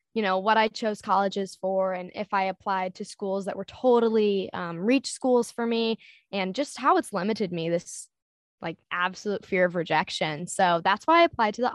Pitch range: 185-235 Hz